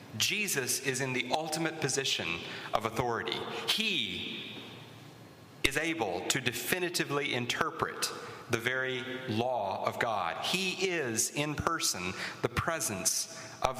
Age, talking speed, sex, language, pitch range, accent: 40-59, 115 wpm, male, English, 125-165 Hz, American